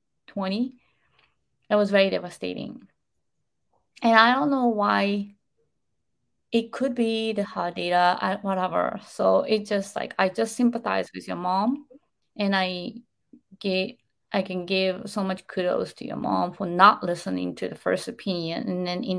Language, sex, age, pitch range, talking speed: English, female, 20-39, 185-225 Hz, 150 wpm